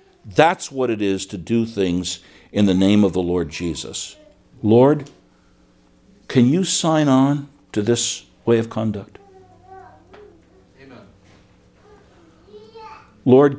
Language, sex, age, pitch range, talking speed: English, male, 60-79, 85-115 Hz, 115 wpm